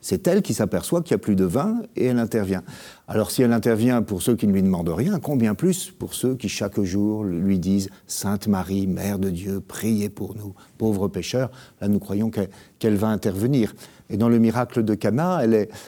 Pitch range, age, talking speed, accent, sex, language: 100-130 Hz, 60-79, 225 wpm, French, male, French